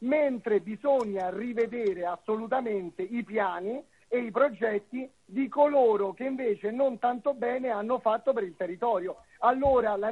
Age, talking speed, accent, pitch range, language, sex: 40-59, 135 wpm, native, 210-260 Hz, Italian, male